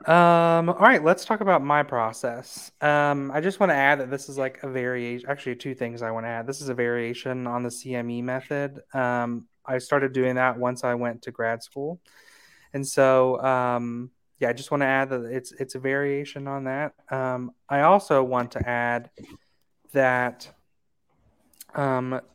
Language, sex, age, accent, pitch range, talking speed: English, male, 30-49, American, 120-140 Hz, 190 wpm